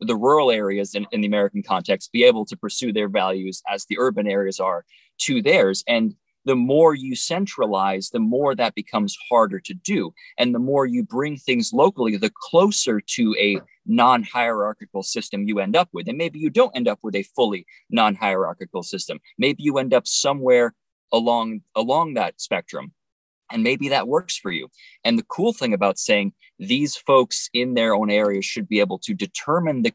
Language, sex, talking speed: English, male, 190 wpm